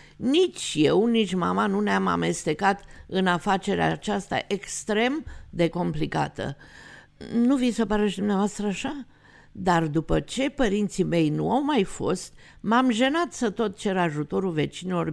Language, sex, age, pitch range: Romanian, female, 50-69, 185-260 Hz